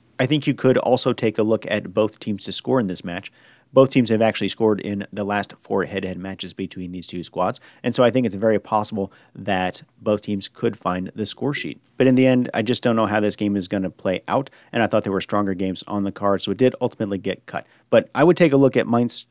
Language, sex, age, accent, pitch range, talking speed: English, male, 40-59, American, 100-125 Hz, 265 wpm